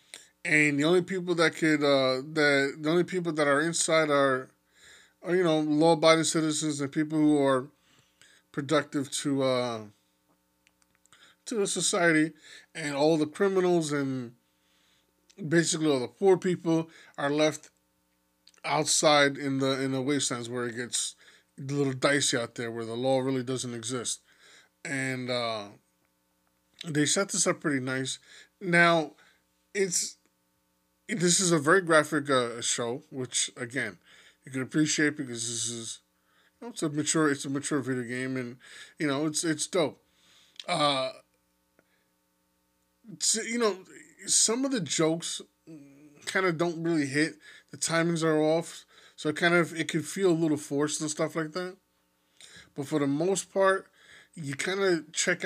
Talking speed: 155 wpm